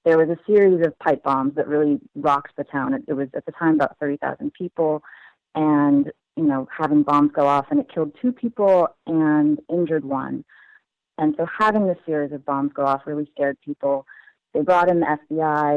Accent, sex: American, female